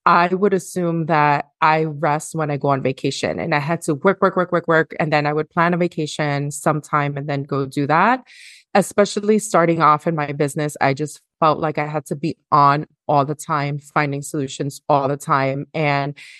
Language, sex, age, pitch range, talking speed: English, female, 30-49, 150-180 Hz, 210 wpm